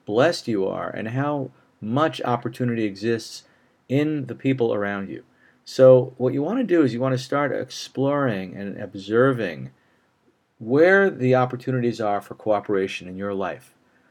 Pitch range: 105-135 Hz